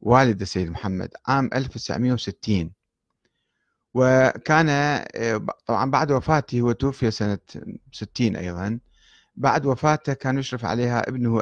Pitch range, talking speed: 110-145 Hz, 105 wpm